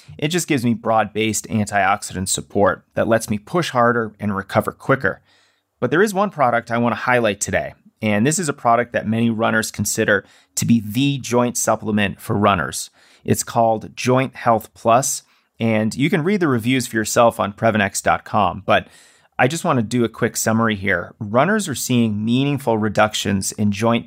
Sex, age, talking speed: male, 30-49, 175 wpm